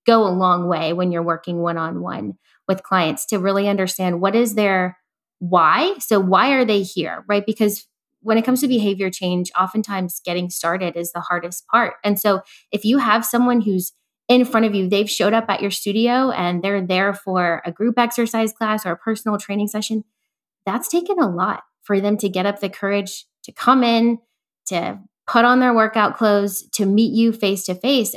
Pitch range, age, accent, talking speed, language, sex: 180-220 Hz, 20-39, American, 200 wpm, English, female